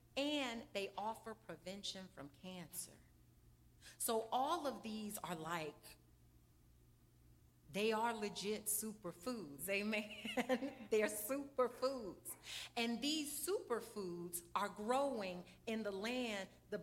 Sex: female